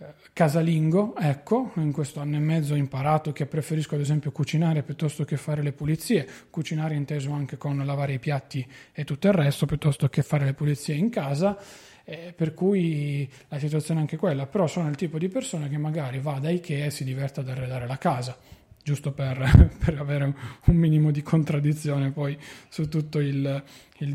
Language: Italian